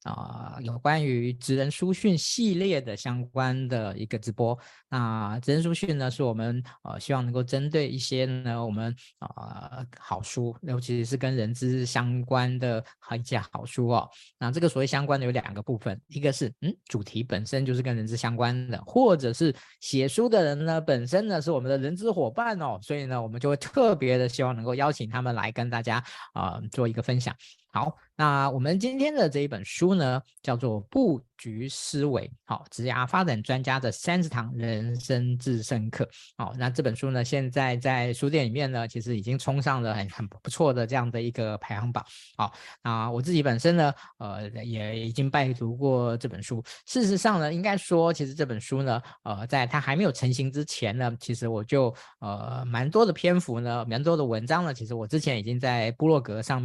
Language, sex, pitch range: Chinese, male, 115-145 Hz